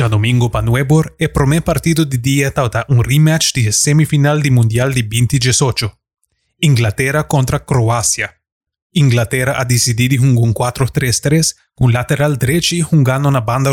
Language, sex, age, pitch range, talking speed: English, male, 20-39, 120-145 Hz, 145 wpm